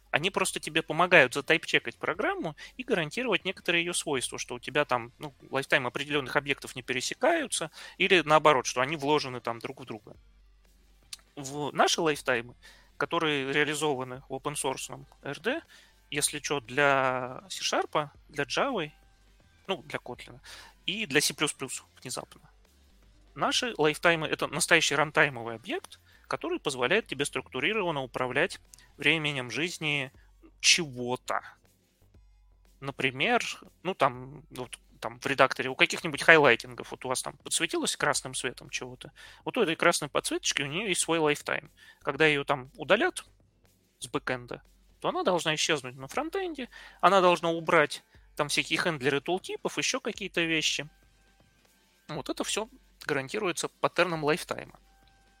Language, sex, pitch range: Russian, male, 130-170 Hz